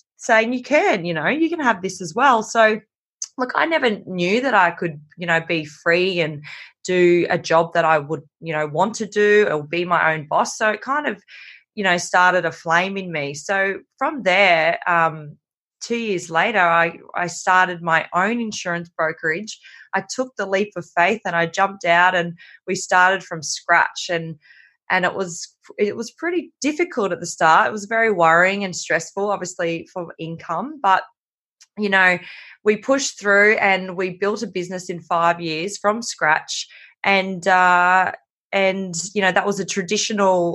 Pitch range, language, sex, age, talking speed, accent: 170-205 Hz, English, female, 20-39, 185 wpm, Australian